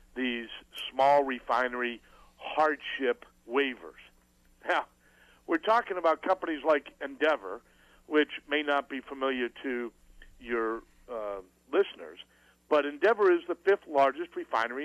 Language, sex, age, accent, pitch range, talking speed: English, male, 60-79, American, 125-205 Hz, 115 wpm